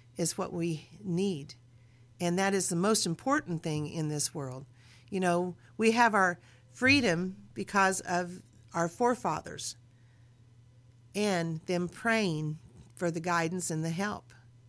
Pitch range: 120-200 Hz